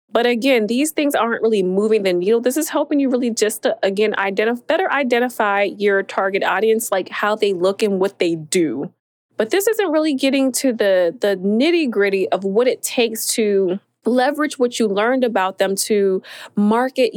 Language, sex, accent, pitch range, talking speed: English, female, American, 205-265 Hz, 180 wpm